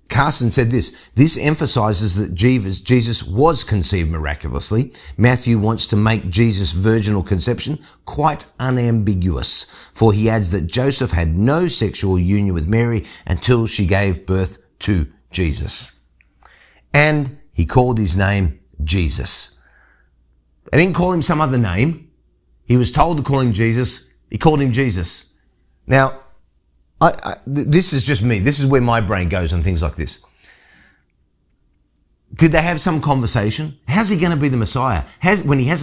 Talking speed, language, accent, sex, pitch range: 155 wpm, English, Australian, male, 95-145 Hz